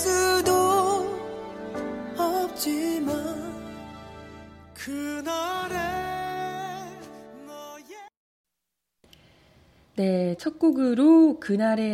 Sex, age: female, 30-49